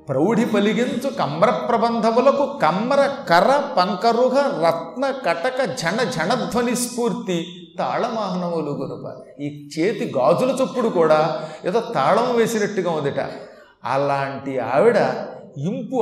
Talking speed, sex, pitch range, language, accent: 95 wpm, male, 160-220 Hz, Telugu, native